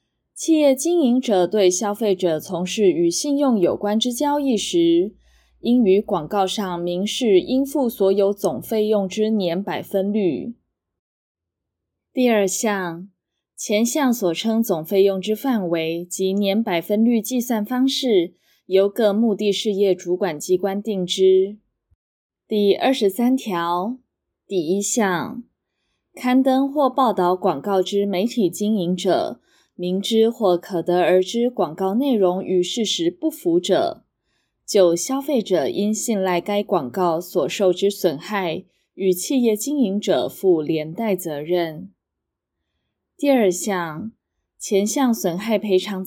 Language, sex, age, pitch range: Chinese, female, 20-39, 180-230 Hz